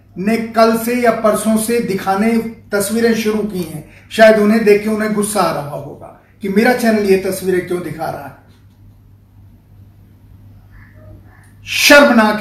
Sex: male